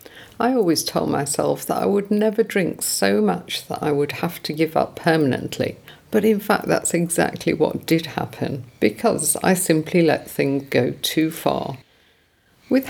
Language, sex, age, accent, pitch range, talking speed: English, female, 50-69, British, 150-195 Hz, 170 wpm